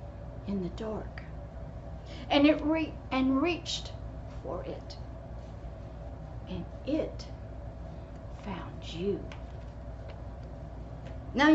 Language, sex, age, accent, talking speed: English, female, 60-79, American, 80 wpm